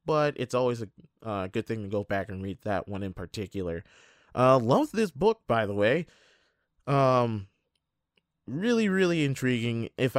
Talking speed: 165 wpm